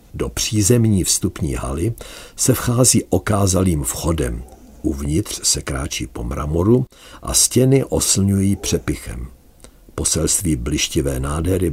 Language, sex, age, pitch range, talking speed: Czech, male, 50-69, 75-105 Hz, 100 wpm